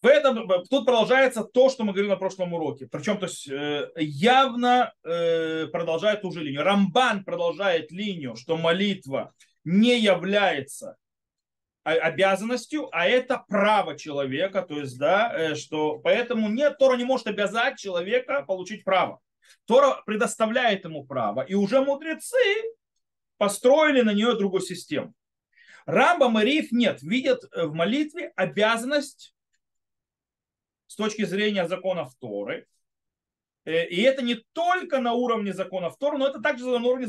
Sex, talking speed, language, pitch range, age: male, 135 wpm, Russian, 185-260 Hz, 30-49